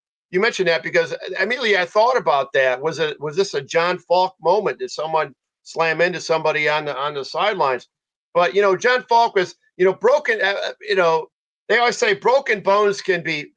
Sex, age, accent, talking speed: male, 50-69, American, 205 wpm